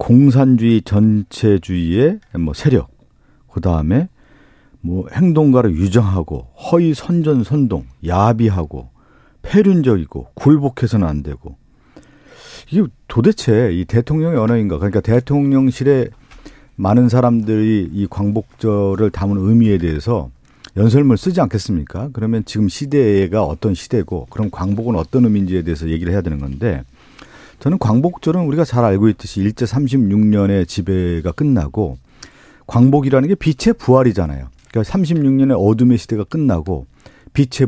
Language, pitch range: Korean, 90-125 Hz